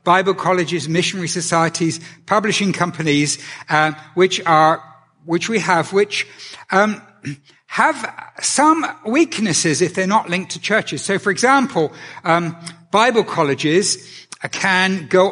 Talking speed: 120 wpm